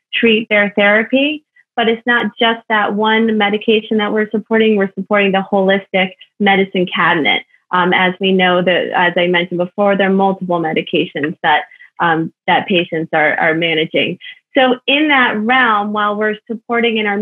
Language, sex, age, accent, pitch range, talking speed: English, female, 30-49, American, 195-225 Hz, 165 wpm